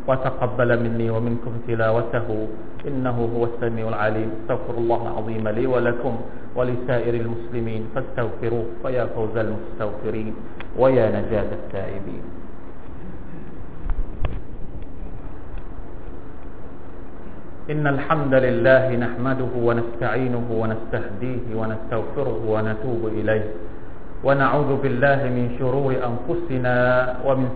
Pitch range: 110-125 Hz